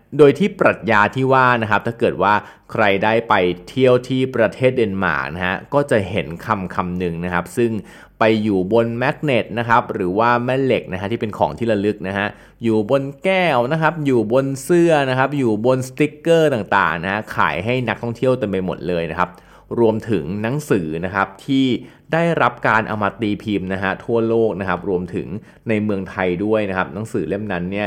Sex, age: male, 20-39